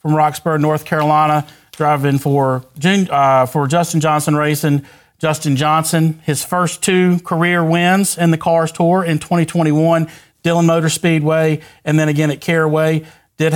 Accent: American